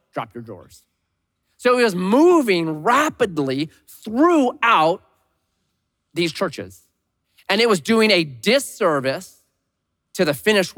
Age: 30-49